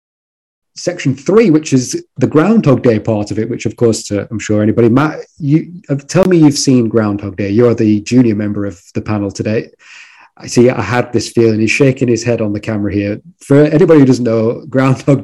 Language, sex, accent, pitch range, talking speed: English, male, British, 105-135 Hz, 215 wpm